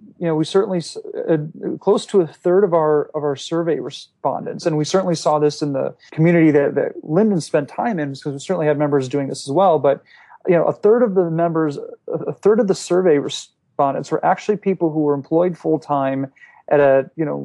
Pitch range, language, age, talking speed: 145-175 Hz, English, 30-49, 220 wpm